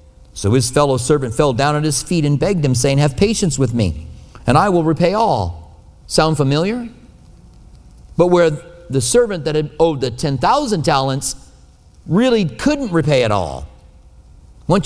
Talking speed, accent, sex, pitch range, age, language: 160 wpm, American, male, 100-170 Hz, 50-69, English